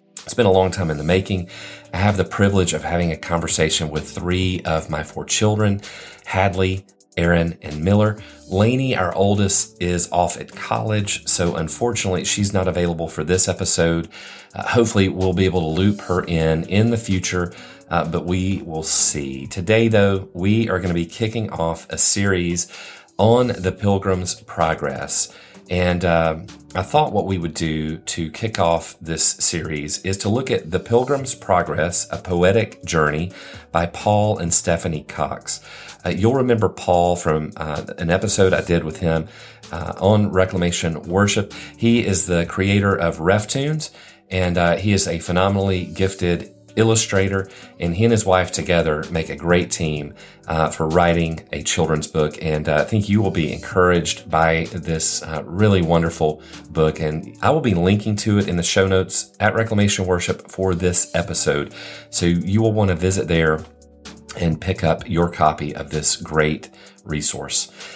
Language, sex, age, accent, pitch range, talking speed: English, male, 40-59, American, 80-100 Hz, 170 wpm